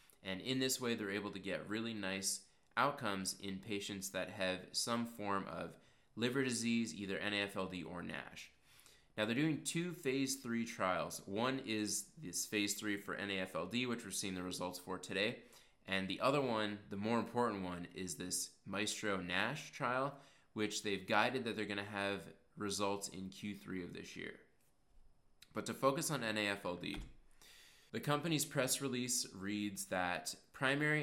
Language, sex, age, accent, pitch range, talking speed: English, male, 20-39, American, 95-120 Hz, 160 wpm